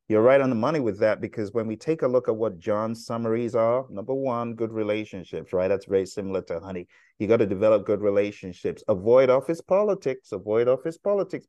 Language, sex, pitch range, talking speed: English, male, 100-135 Hz, 210 wpm